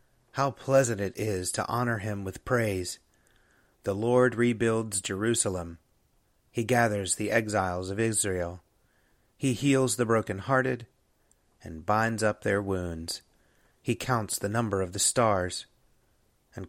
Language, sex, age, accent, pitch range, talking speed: English, male, 30-49, American, 100-115 Hz, 130 wpm